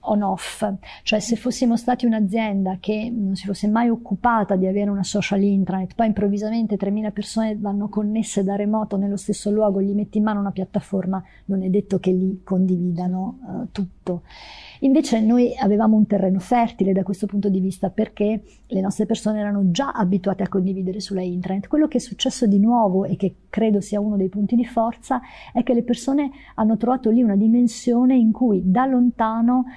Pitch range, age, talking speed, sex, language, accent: 190-225 Hz, 50-69, 185 wpm, female, Italian, native